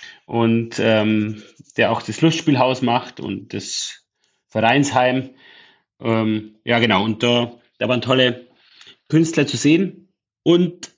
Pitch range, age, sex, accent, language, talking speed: 115-145 Hz, 30-49, male, German, German, 120 wpm